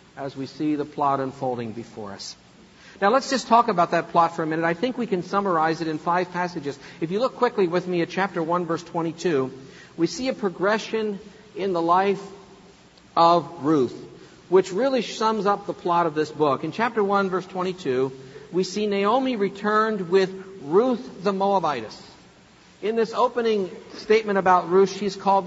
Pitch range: 160-200 Hz